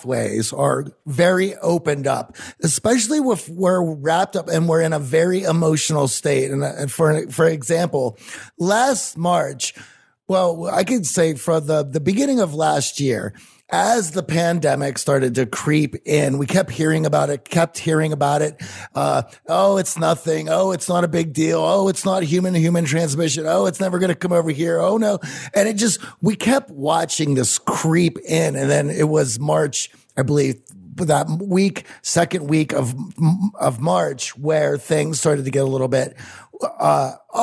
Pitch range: 150-190 Hz